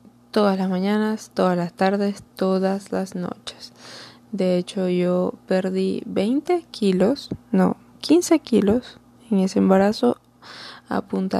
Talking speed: 120 wpm